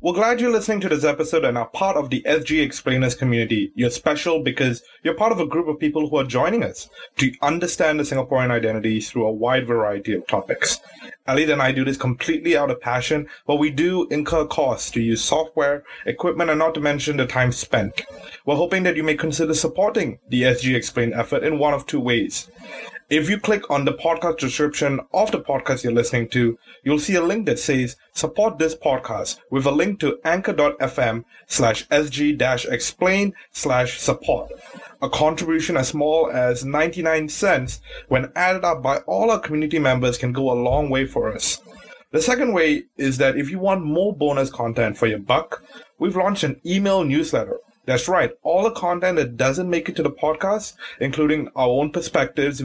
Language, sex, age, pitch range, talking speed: English, male, 20-39, 130-170 Hz, 195 wpm